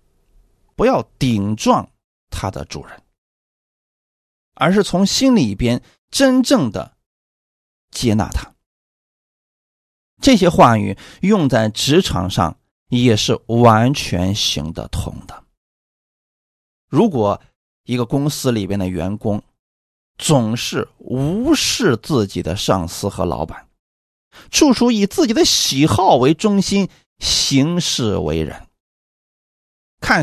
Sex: male